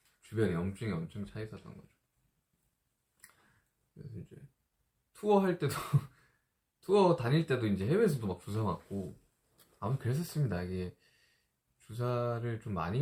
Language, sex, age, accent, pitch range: Korean, male, 20-39, native, 95-145 Hz